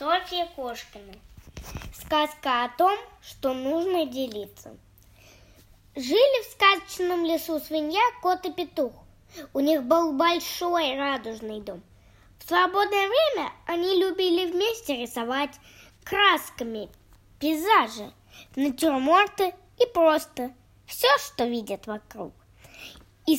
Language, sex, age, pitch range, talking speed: Russian, female, 20-39, 240-365 Hz, 100 wpm